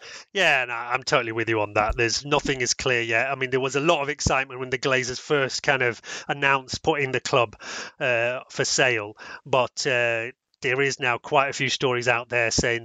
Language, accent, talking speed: English, British, 215 wpm